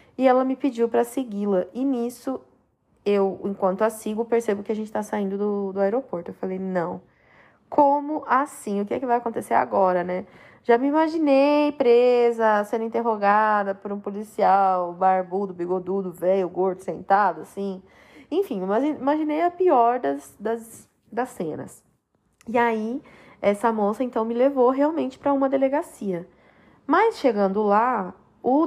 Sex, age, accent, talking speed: female, 20-39, Brazilian, 150 wpm